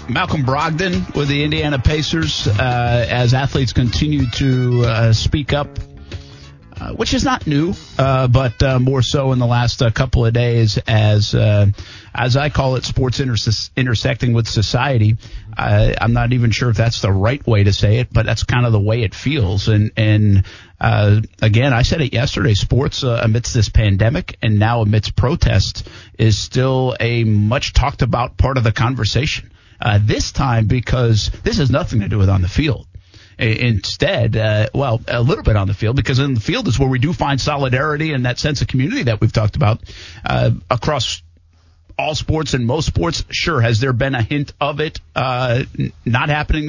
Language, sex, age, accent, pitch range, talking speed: English, male, 50-69, American, 110-135 Hz, 190 wpm